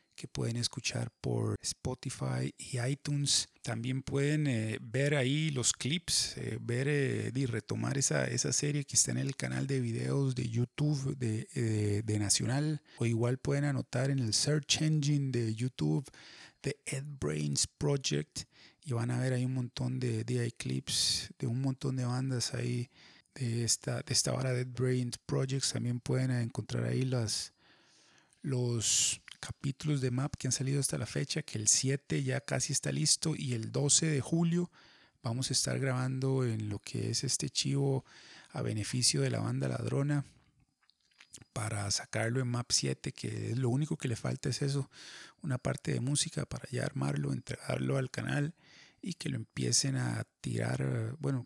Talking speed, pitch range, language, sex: 170 wpm, 115-140 Hz, Spanish, male